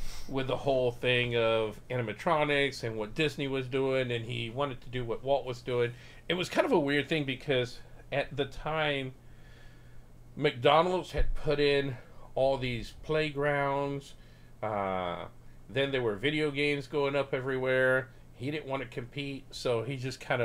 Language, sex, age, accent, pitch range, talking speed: English, male, 40-59, American, 110-140 Hz, 165 wpm